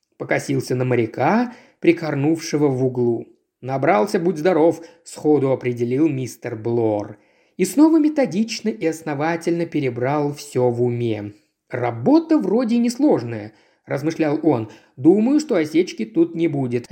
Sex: male